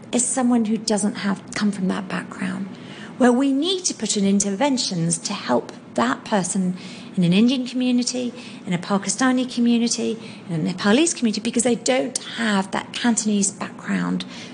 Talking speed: 160 wpm